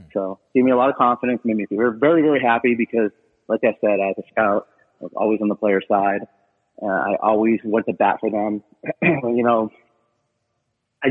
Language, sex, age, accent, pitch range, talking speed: English, male, 30-49, American, 110-140 Hz, 205 wpm